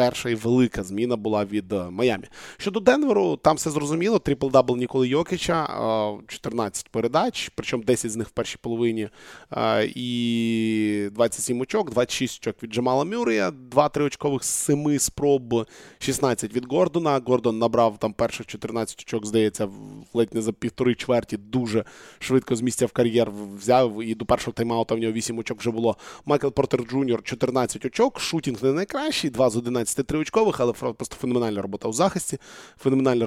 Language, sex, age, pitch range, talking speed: Ukrainian, male, 20-39, 115-140 Hz, 155 wpm